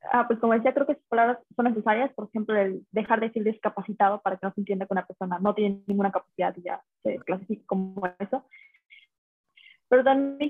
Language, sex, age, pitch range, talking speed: Spanish, female, 20-39, 195-240 Hz, 210 wpm